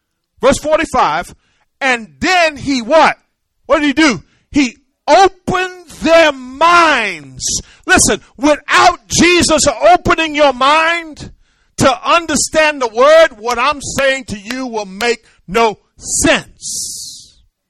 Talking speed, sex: 110 wpm, male